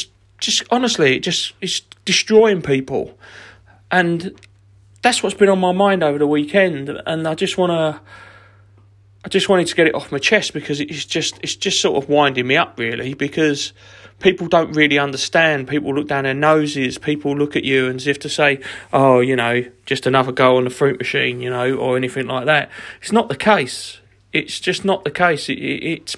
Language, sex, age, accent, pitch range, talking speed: English, male, 40-59, British, 135-190 Hz, 195 wpm